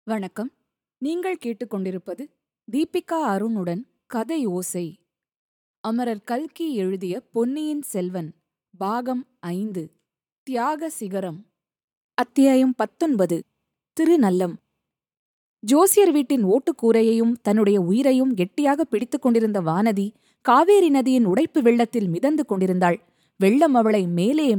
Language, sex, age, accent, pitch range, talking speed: Tamil, female, 20-39, native, 200-275 Hz, 90 wpm